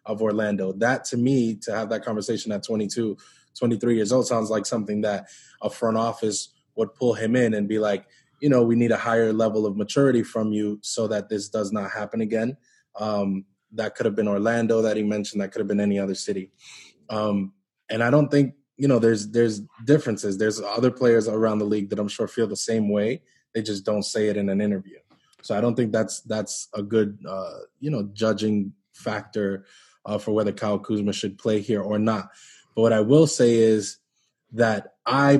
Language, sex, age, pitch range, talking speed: English, male, 20-39, 105-115 Hz, 210 wpm